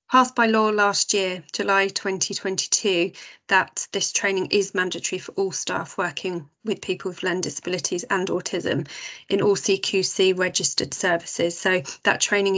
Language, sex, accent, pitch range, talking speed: English, female, British, 195-220 Hz, 150 wpm